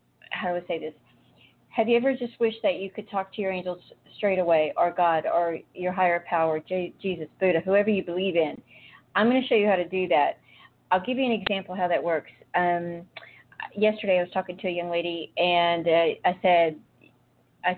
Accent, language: American, English